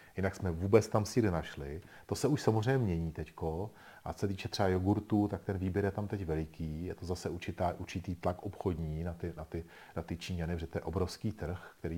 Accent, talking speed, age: native, 220 wpm, 40-59